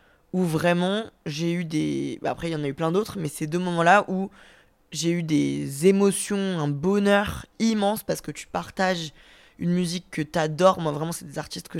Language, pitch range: French, 155-190 Hz